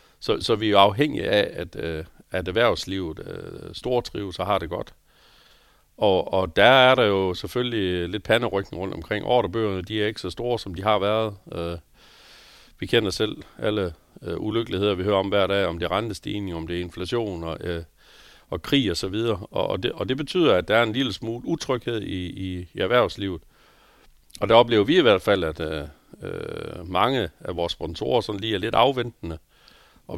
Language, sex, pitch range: Danish, male, 90-115 Hz